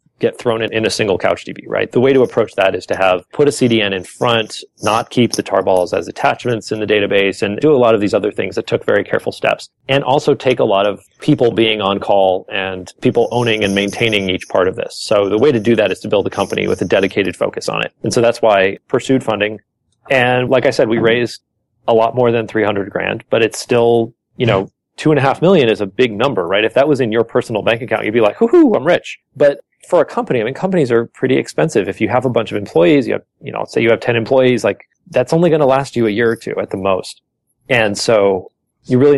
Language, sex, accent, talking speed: English, male, American, 265 wpm